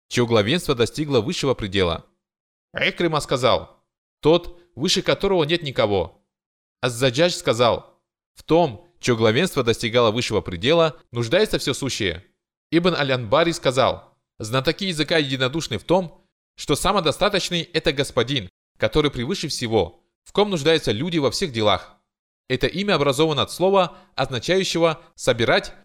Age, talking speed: 20-39, 125 wpm